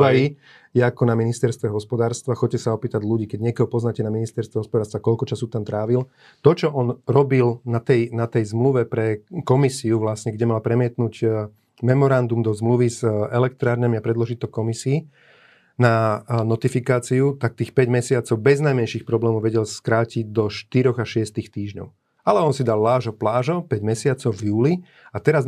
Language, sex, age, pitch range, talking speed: Slovak, male, 30-49, 115-135 Hz, 165 wpm